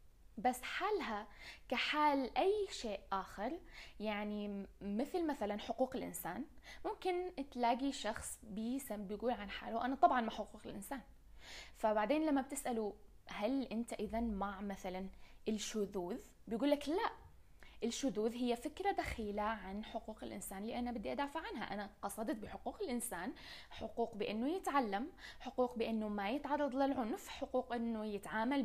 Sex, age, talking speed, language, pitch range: female, 20-39, 125 wpm, Arabic, 210-275 Hz